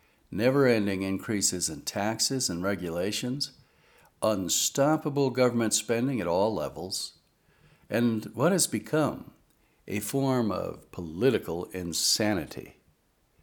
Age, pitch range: 60-79, 95-125 Hz